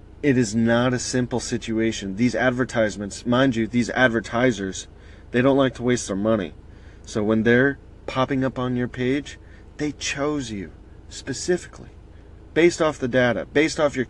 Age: 30-49